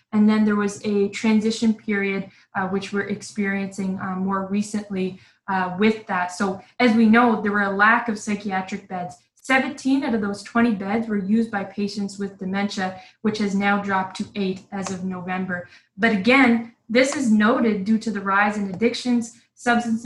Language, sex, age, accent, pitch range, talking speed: English, female, 20-39, American, 195-225 Hz, 180 wpm